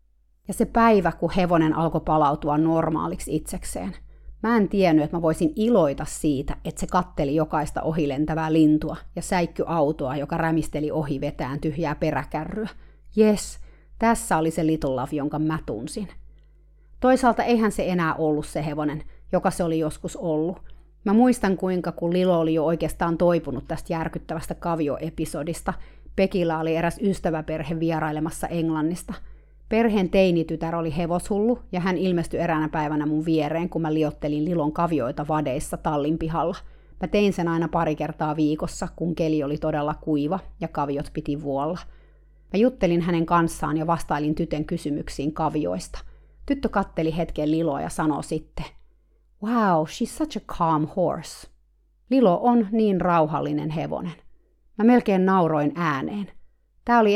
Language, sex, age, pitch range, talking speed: Finnish, female, 30-49, 155-185 Hz, 145 wpm